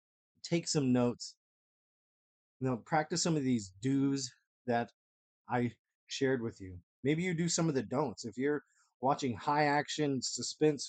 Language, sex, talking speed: English, male, 150 wpm